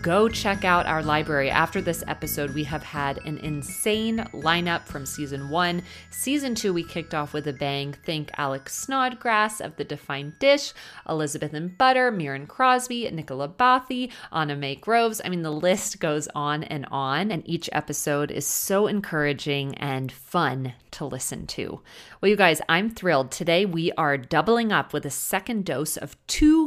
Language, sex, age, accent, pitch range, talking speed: English, female, 30-49, American, 140-185 Hz, 175 wpm